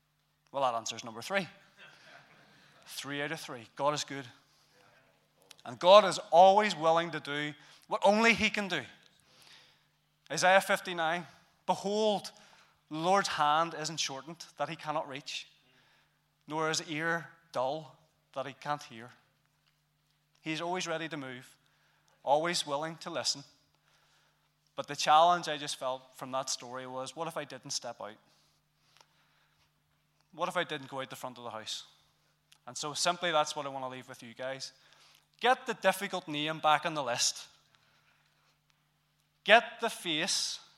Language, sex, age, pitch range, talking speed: English, male, 20-39, 135-170 Hz, 150 wpm